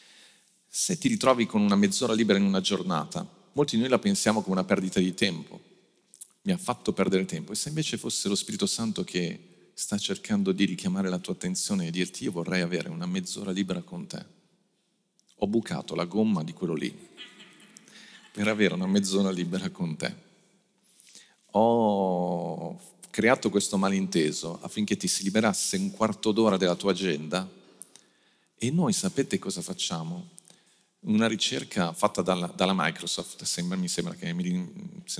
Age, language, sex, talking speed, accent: 40-59, Italian, male, 160 wpm, native